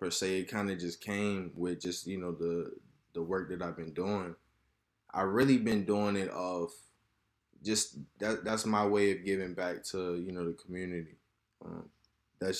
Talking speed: 185 wpm